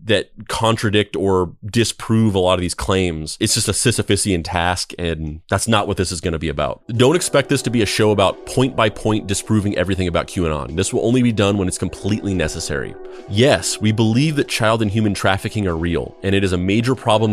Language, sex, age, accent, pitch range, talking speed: English, male, 30-49, American, 90-110 Hz, 220 wpm